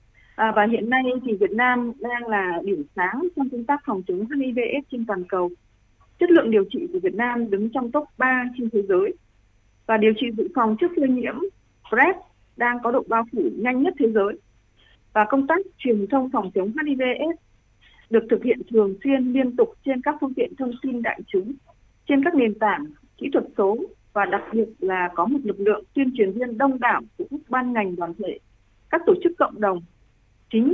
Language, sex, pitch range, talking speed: Vietnamese, female, 215-290 Hz, 210 wpm